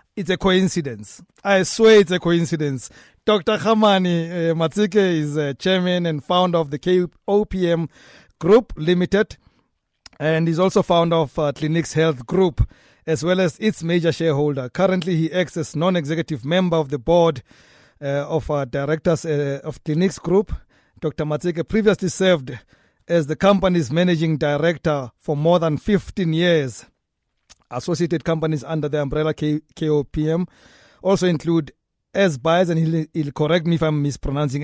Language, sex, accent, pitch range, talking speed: English, male, South African, 150-180 Hz, 145 wpm